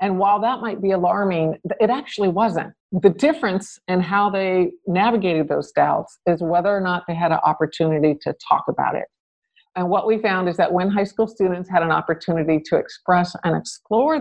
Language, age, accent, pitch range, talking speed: English, 50-69, American, 160-195 Hz, 195 wpm